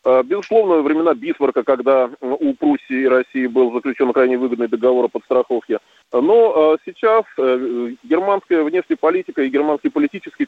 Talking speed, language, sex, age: 130 wpm, Russian, male, 20-39